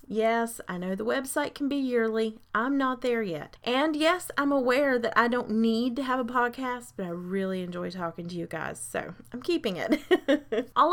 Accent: American